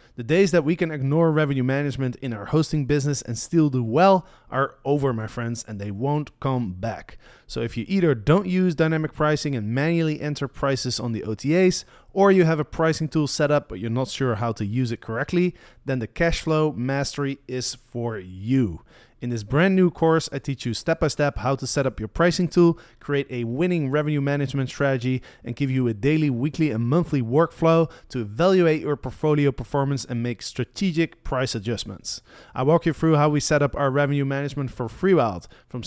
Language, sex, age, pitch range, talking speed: English, male, 30-49, 125-160 Hz, 200 wpm